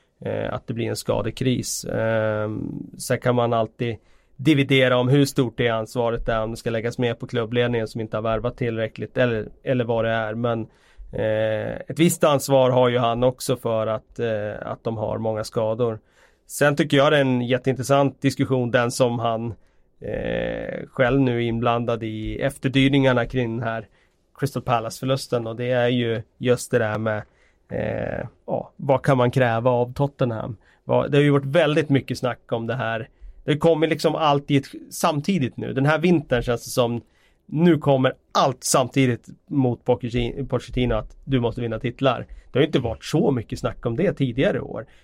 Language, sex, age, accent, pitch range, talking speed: Swedish, male, 30-49, native, 115-135 Hz, 180 wpm